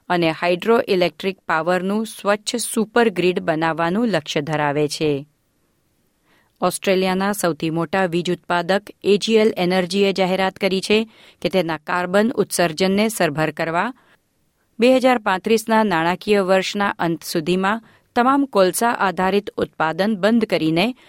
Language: Gujarati